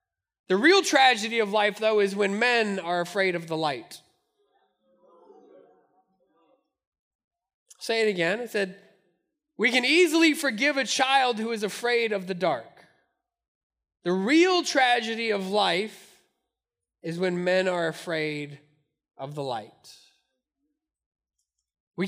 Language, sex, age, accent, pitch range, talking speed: English, male, 20-39, American, 210-295 Hz, 125 wpm